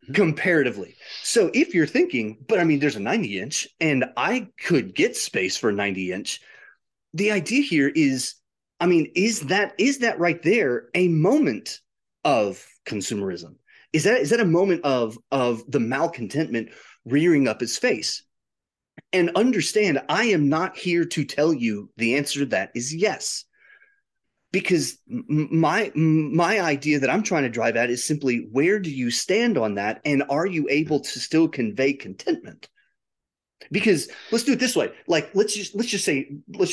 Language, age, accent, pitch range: English, 30-49, American, 120-180 Hz